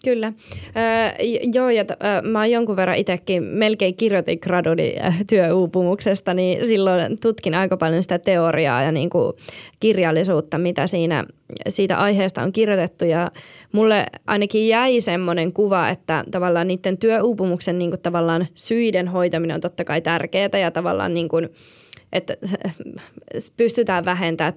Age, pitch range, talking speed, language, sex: 20-39, 175-205 Hz, 130 wpm, Finnish, female